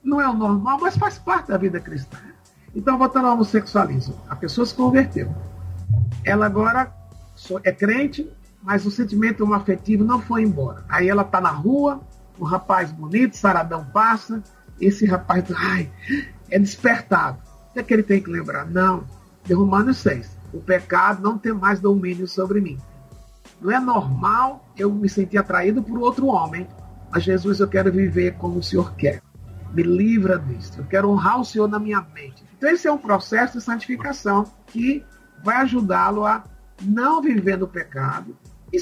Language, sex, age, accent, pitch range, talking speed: Portuguese, male, 50-69, Brazilian, 180-245 Hz, 170 wpm